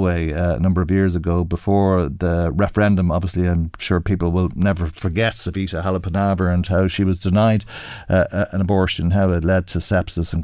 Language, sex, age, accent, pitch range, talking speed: English, male, 50-69, Irish, 90-115 Hz, 180 wpm